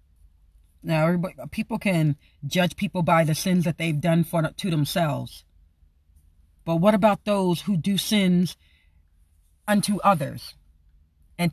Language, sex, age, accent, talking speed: English, female, 40-59, American, 130 wpm